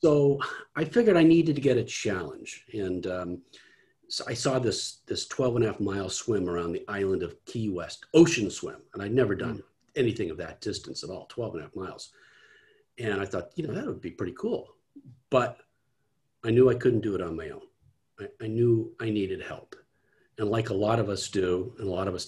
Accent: American